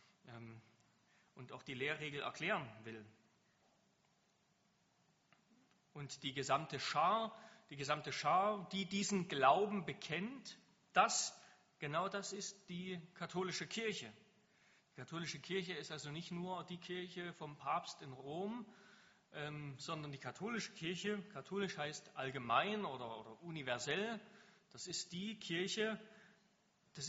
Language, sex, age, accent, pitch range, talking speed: German, male, 30-49, German, 150-205 Hz, 115 wpm